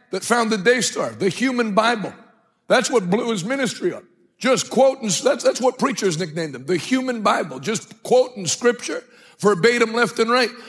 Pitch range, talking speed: 190-245 Hz, 175 wpm